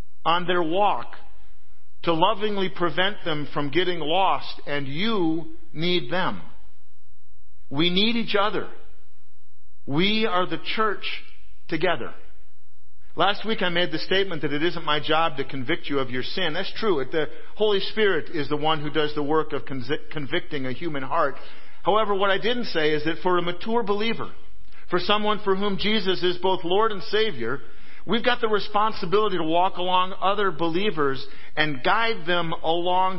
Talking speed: 165 wpm